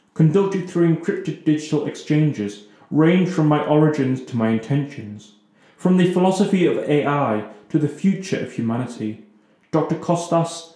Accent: British